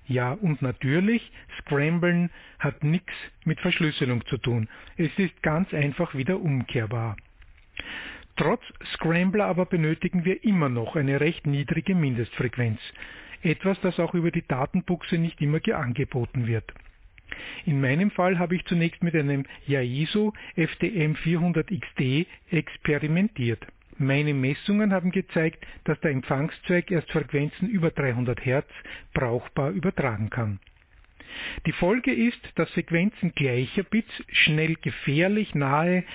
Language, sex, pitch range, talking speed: German, male, 135-180 Hz, 120 wpm